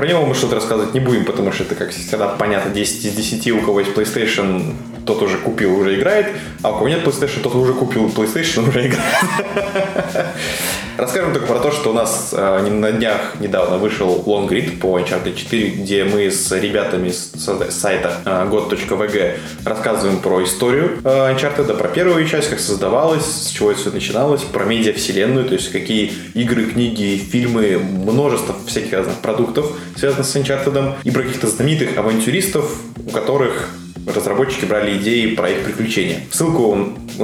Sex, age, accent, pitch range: male, 20-39, native, 100-135 Hz